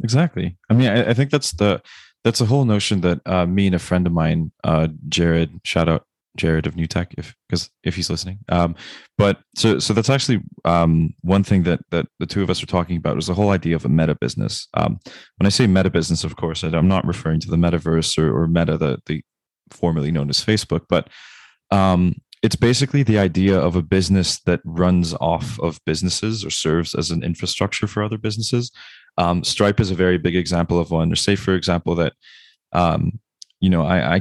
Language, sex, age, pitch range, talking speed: English, male, 20-39, 85-100 Hz, 215 wpm